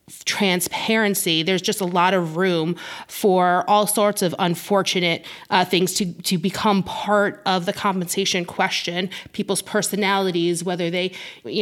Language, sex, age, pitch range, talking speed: English, female, 30-49, 180-205 Hz, 140 wpm